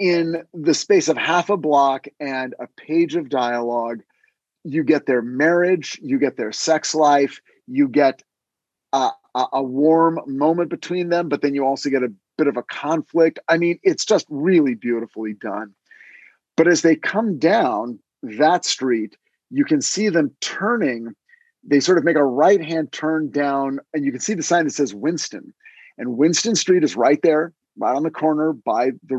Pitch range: 130-170 Hz